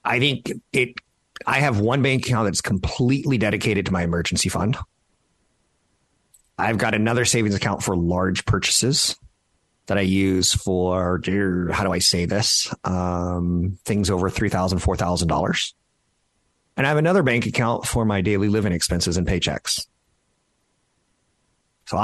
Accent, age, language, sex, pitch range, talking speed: American, 30-49, English, male, 95-120 Hz, 140 wpm